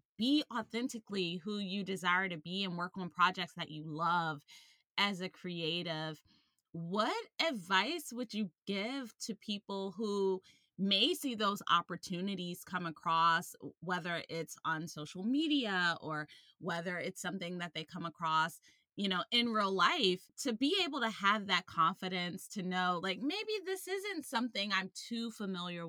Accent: American